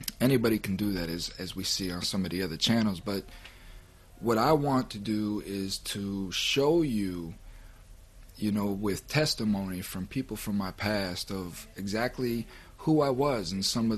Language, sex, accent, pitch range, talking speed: English, male, American, 90-105 Hz, 175 wpm